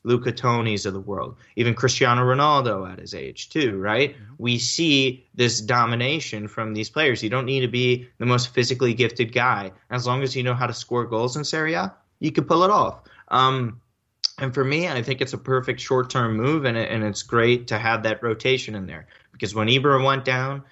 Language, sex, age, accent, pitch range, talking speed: English, male, 20-39, American, 105-130 Hz, 210 wpm